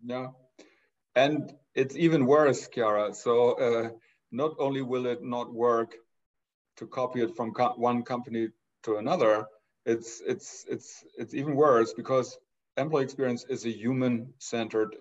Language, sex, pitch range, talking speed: English, male, 120-140 Hz, 140 wpm